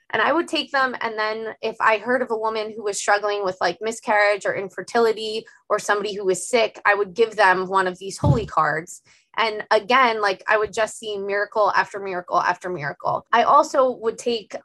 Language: English